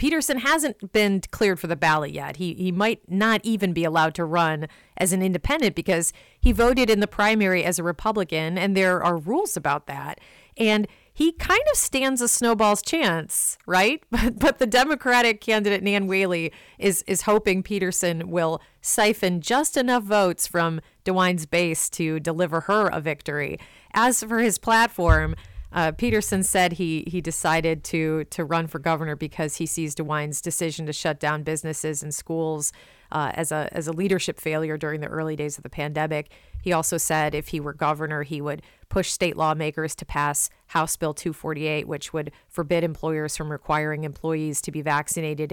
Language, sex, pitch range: English, female, 155-195 Hz